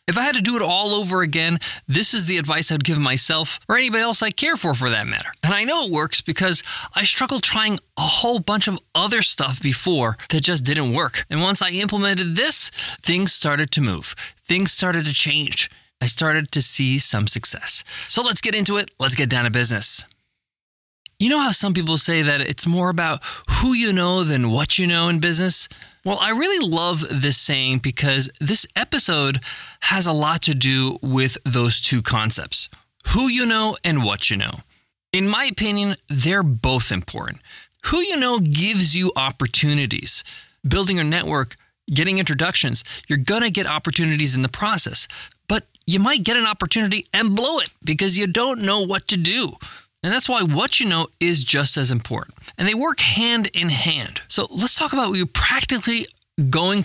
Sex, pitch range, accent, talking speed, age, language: male, 135-200 Hz, American, 195 wpm, 20-39, English